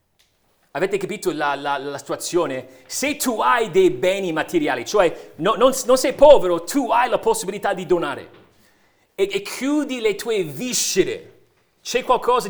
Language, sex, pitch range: Italian, male, 160-250 Hz